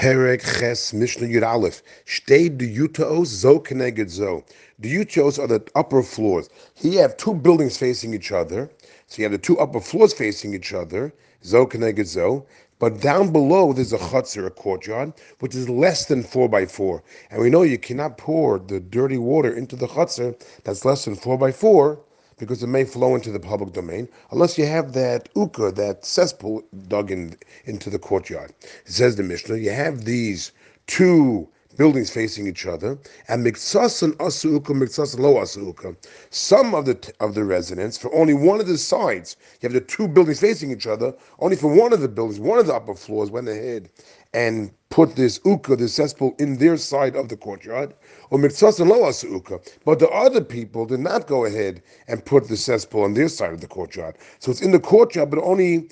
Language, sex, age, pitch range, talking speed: English, male, 40-59, 115-160 Hz, 195 wpm